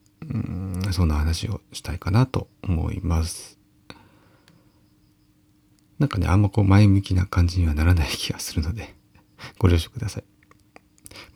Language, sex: Japanese, male